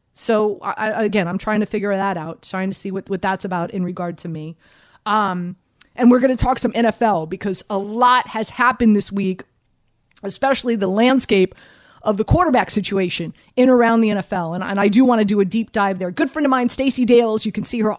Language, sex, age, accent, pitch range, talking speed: English, female, 30-49, American, 195-235 Hz, 225 wpm